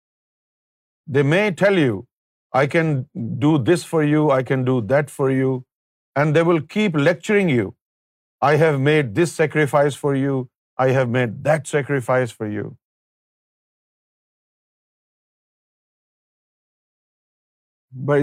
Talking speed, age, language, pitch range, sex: 120 wpm, 50-69, Urdu, 120-145 Hz, male